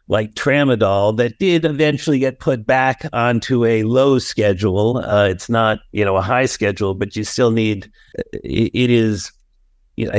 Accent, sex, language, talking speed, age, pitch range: American, male, English, 170 wpm, 50-69, 110-130 Hz